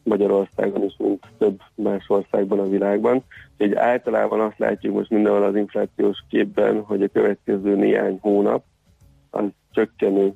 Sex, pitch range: male, 100-105 Hz